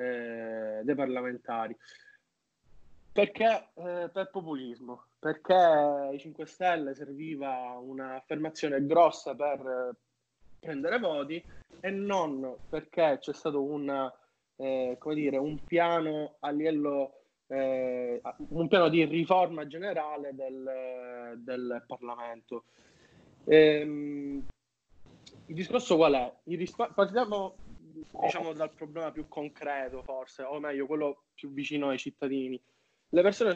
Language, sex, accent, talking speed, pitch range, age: Italian, male, native, 115 wpm, 135-170 Hz, 20-39